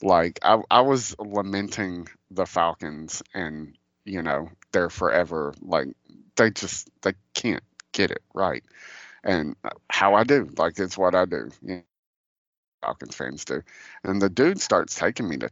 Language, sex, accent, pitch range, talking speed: English, male, American, 90-130 Hz, 160 wpm